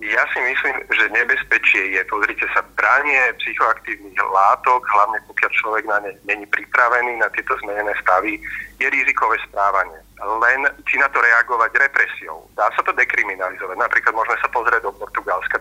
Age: 40-59